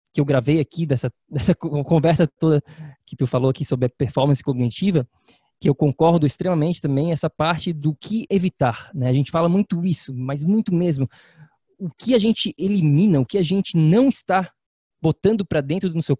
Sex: male